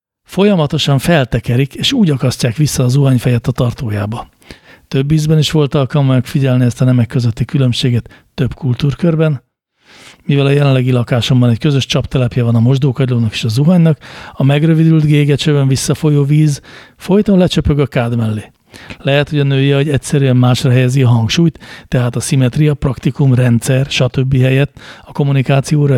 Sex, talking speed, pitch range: male, 150 wpm, 125-145 Hz